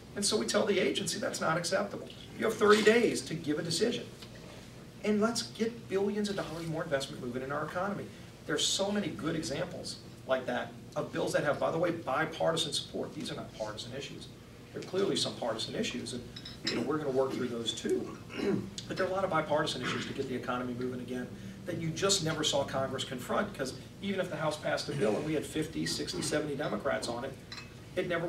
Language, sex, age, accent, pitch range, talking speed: English, male, 40-59, American, 125-160 Hz, 220 wpm